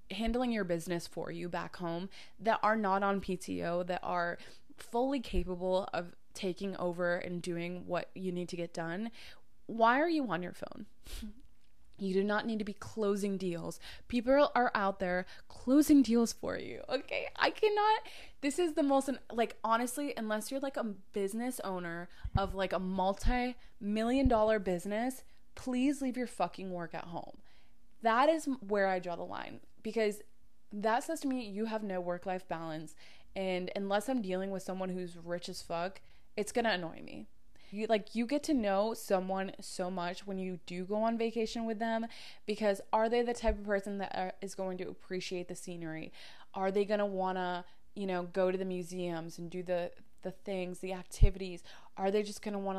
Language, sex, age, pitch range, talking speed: English, female, 20-39, 180-225 Hz, 190 wpm